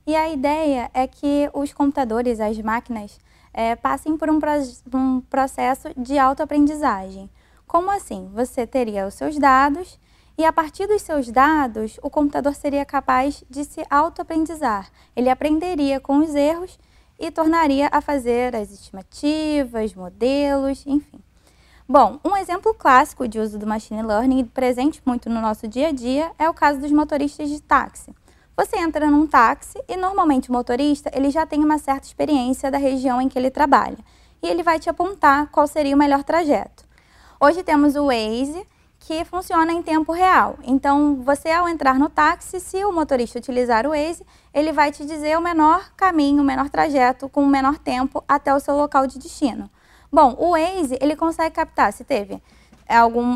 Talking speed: 170 wpm